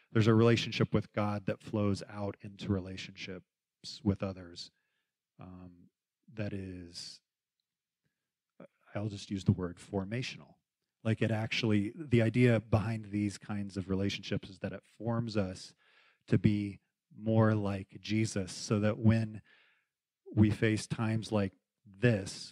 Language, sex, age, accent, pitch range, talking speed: English, male, 30-49, American, 100-115 Hz, 130 wpm